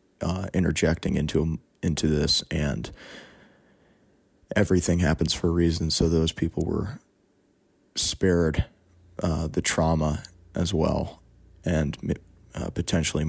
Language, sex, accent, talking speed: English, male, American, 110 wpm